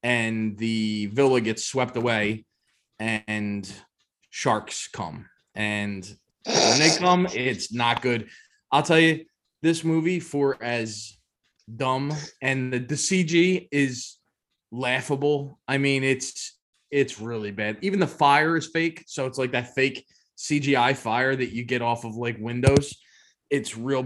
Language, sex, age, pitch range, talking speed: English, male, 20-39, 115-150 Hz, 140 wpm